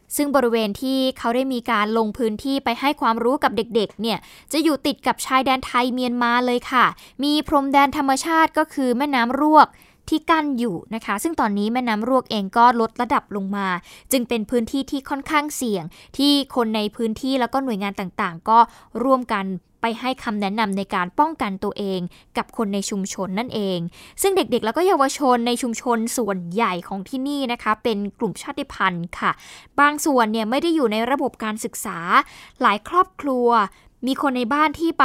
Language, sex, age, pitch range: Thai, female, 10-29, 220-275 Hz